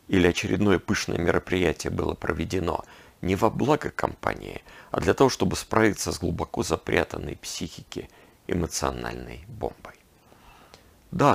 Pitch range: 80-105 Hz